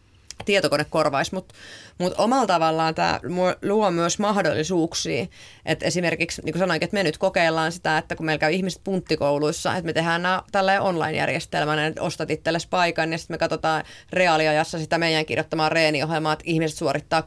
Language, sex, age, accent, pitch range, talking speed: Finnish, female, 30-49, native, 150-175 Hz, 165 wpm